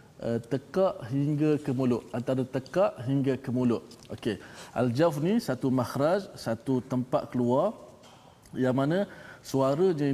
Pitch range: 115-140 Hz